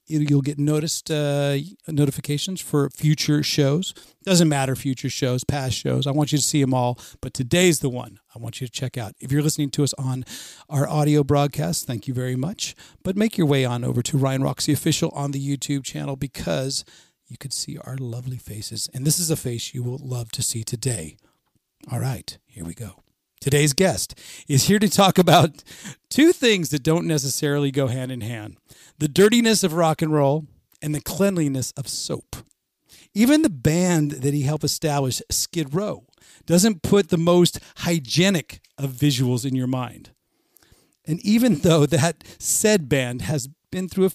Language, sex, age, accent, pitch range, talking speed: English, male, 40-59, American, 130-160 Hz, 185 wpm